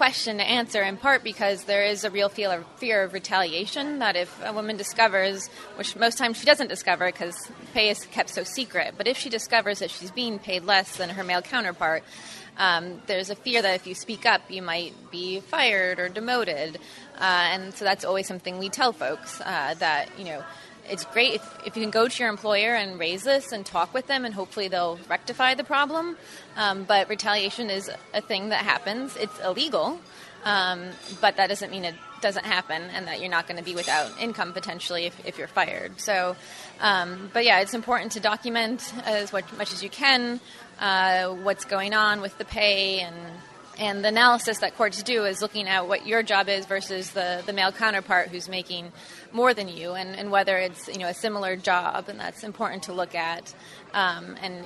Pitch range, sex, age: 180-220 Hz, female, 20-39